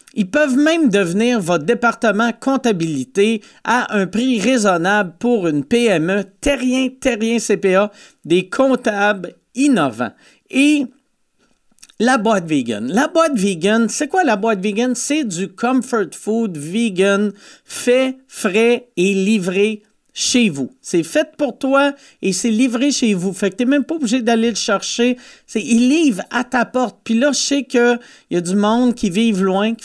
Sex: male